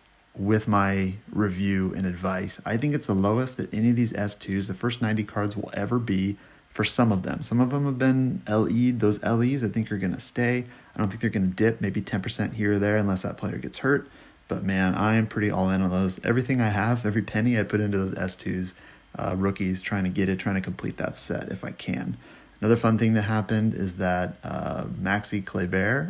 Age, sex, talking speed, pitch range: 30-49, male, 225 wpm, 95-110 Hz